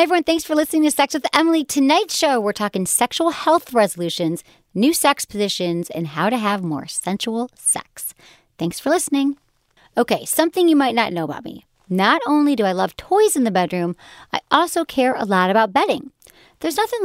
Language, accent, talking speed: English, American, 190 wpm